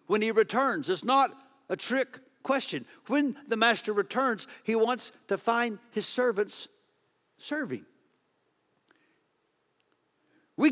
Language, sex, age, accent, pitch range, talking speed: English, male, 60-79, American, 180-245 Hz, 110 wpm